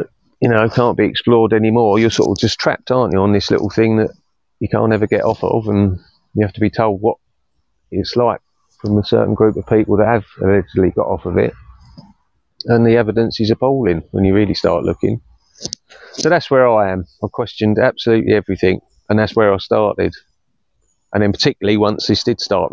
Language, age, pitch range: English, 30-49, 100-115 Hz